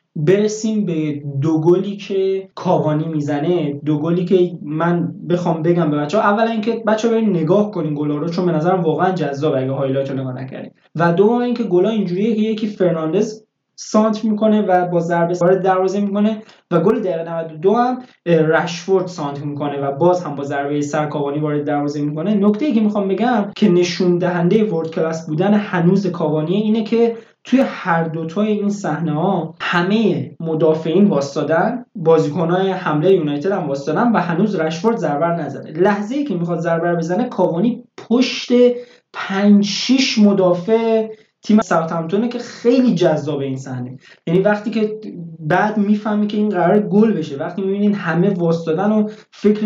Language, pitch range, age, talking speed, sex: Persian, 160-215 Hz, 20-39, 160 wpm, male